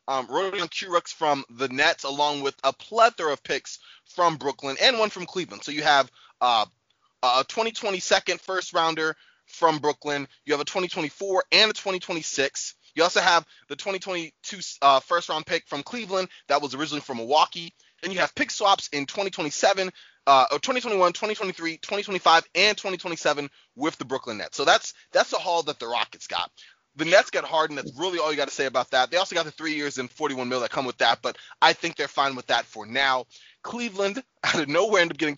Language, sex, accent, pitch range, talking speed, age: English, male, American, 140-185 Hz, 205 wpm, 20-39